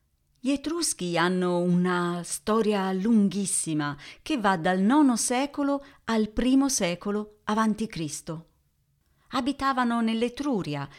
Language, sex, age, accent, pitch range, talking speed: Italian, female, 40-59, native, 165-235 Hz, 95 wpm